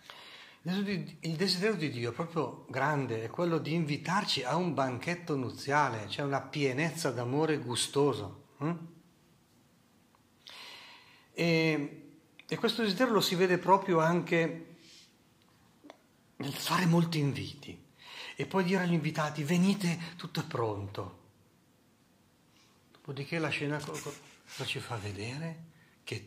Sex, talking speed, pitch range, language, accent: male, 115 wpm, 130-165 Hz, Italian, native